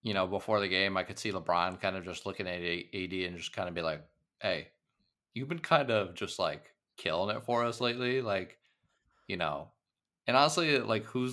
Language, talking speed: English, 210 wpm